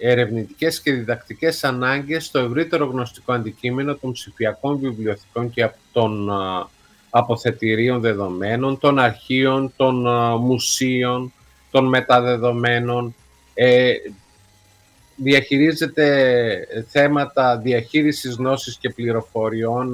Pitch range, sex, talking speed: 115-140 Hz, male, 85 wpm